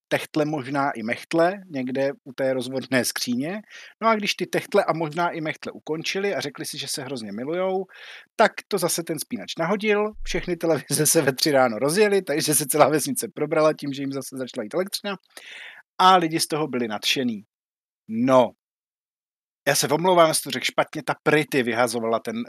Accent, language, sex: native, Czech, male